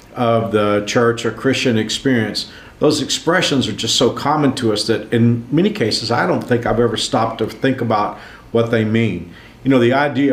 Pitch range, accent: 105-125 Hz, American